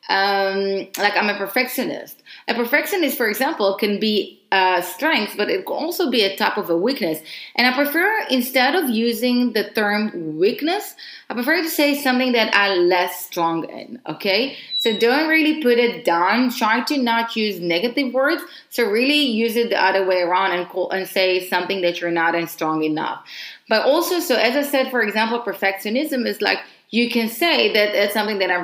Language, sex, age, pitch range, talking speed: English, female, 30-49, 190-260 Hz, 195 wpm